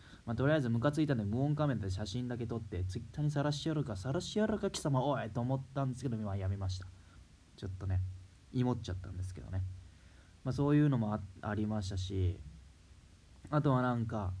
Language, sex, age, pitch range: Japanese, male, 20-39, 95-125 Hz